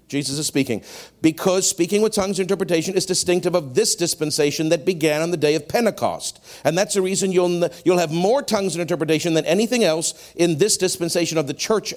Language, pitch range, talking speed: English, 150-225 Hz, 205 wpm